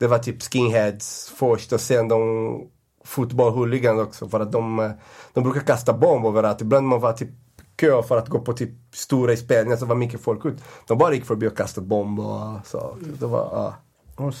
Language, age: Swedish, 30-49